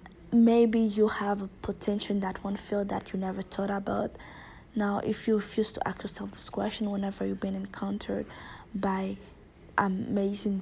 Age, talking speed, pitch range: 20-39, 165 wpm, 190-215 Hz